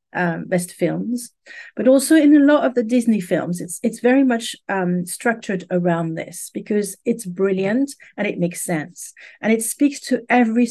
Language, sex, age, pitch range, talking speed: English, female, 50-69, 185-240 Hz, 180 wpm